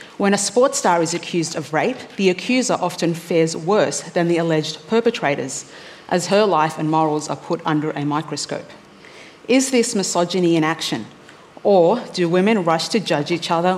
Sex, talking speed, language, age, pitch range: female, 175 wpm, English, 40-59, 170-210 Hz